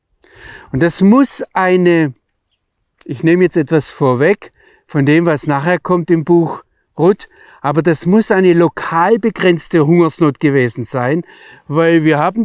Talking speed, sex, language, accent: 140 wpm, male, German, German